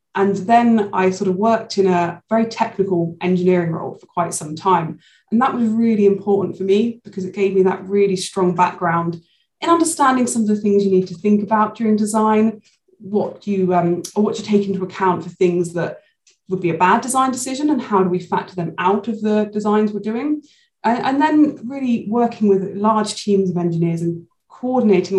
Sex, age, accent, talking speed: female, 20-39, British, 205 wpm